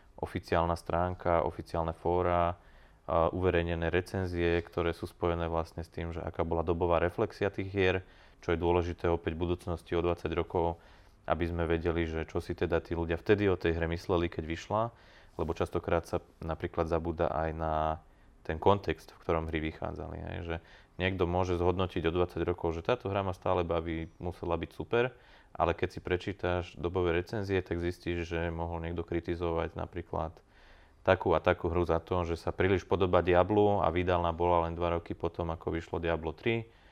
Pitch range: 85-95 Hz